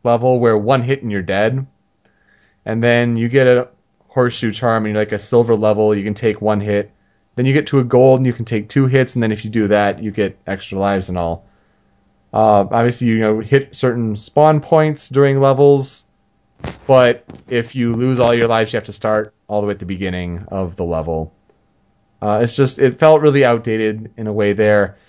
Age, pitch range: 30-49, 100-135 Hz